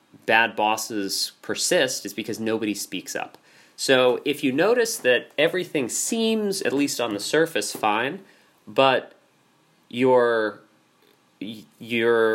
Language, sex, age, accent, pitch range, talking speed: English, male, 30-49, American, 105-140 Hz, 115 wpm